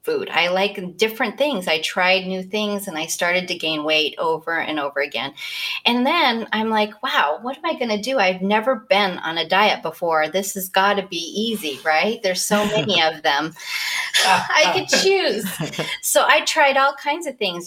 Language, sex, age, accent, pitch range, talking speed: English, female, 30-49, American, 165-215 Hz, 200 wpm